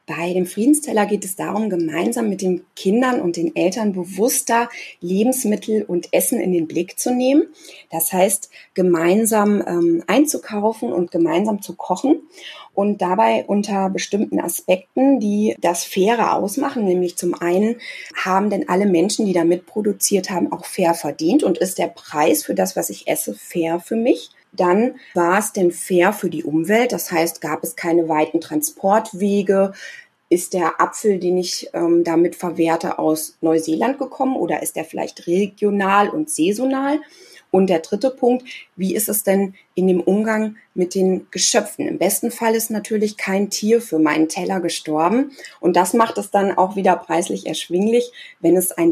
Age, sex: 30-49, female